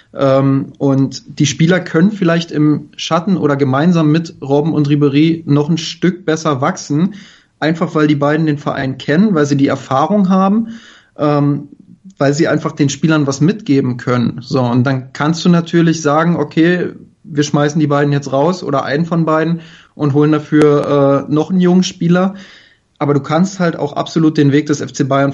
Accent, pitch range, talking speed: German, 140-165 Hz, 180 wpm